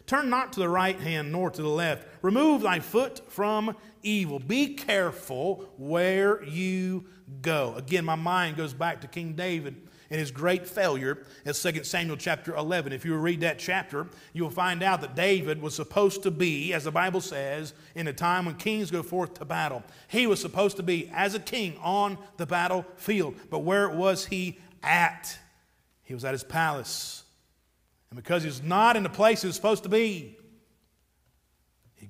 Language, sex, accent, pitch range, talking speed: English, male, American, 135-185 Hz, 180 wpm